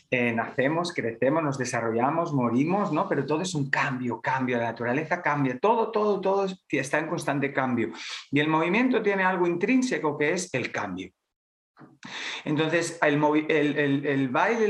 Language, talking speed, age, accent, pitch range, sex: English, 155 wpm, 40-59, Spanish, 135-180 Hz, male